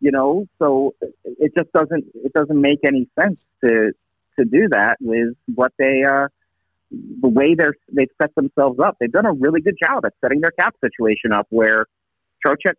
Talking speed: 190 wpm